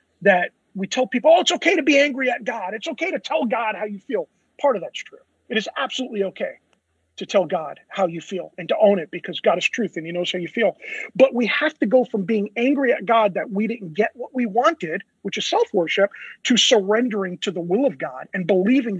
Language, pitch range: English, 200-285 Hz